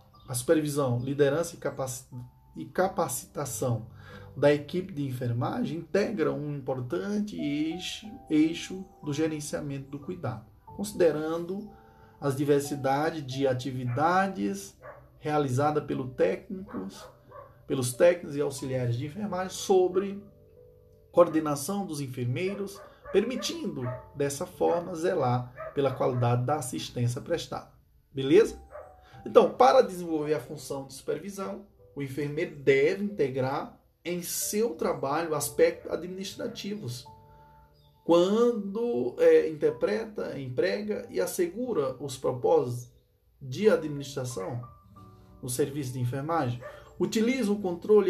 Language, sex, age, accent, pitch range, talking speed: Portuguese, male, 20-39, Brazilian, 125-185 Hz, 100 wpm